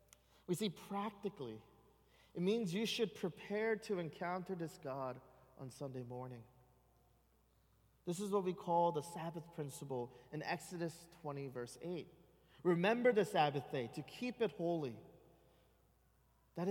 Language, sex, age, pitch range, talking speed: English, male, 30-49, 145-200 Hz, 135 wpm